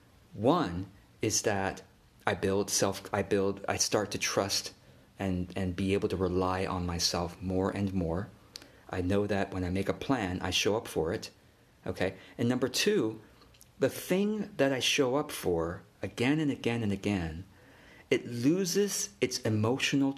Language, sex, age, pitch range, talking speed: English, male, 50-69, 95-135 Hz, 165 wpm